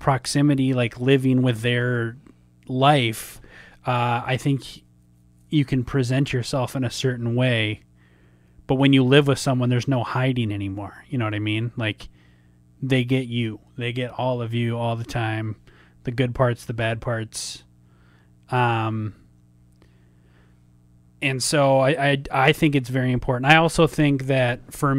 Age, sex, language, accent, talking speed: 30-49, male, English, American, 155 wpm